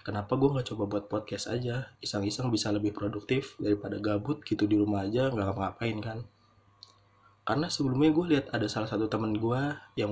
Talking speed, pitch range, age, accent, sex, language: 170 wpm, 100-120 Hz, 20-39, native, male, Indonesian